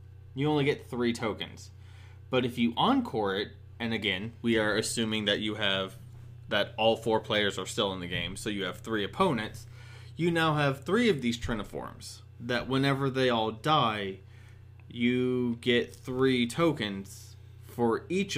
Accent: American